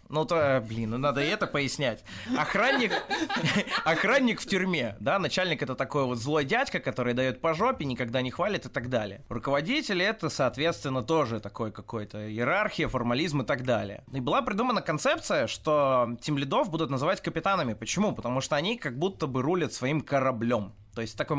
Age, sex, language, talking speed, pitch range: 20-39, male, Russian, 180 wpm, 125-165 Hz